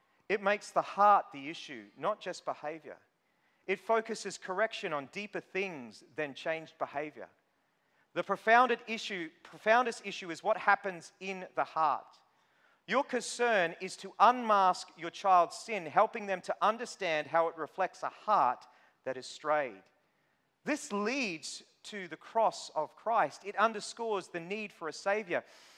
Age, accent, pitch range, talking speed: 40-59, Australian, 150-215 Hz, 140 wpm